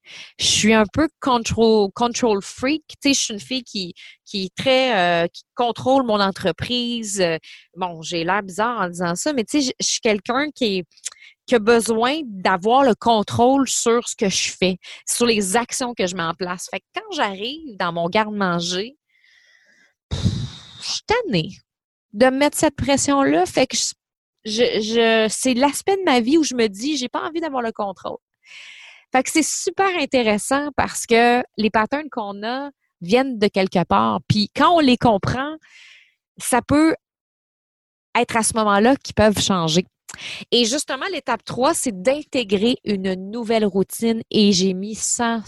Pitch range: 195-275 Hz